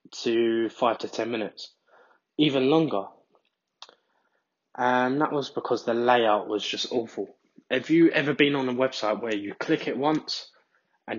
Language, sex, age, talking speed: English, male, 10-29, 155 wpm